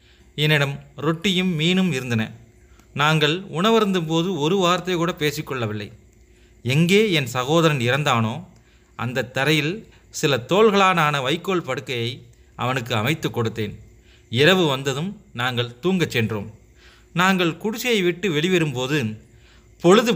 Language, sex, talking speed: Tamil, male, 100 wpm